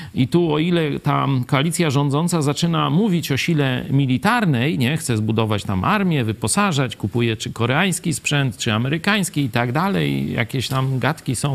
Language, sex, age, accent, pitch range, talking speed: Polish, male, 40-59, native, 120-165 Hz, 160 wpm